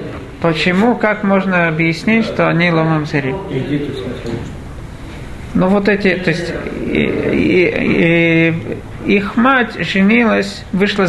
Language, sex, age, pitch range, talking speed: Russian, male, 40-59, 150-205 Hz, 90 wpm